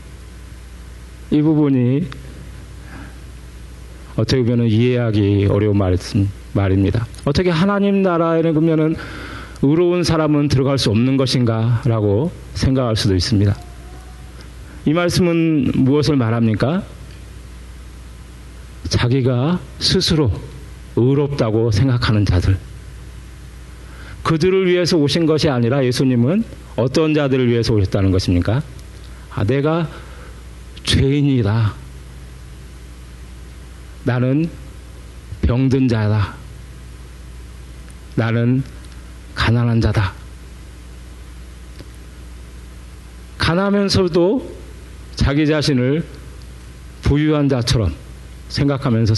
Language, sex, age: Korean, male, 40-59